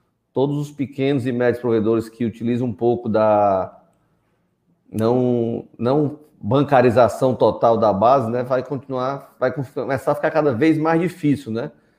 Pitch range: 120-150 Hz